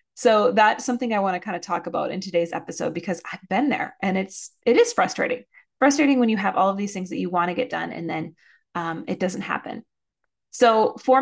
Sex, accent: female, American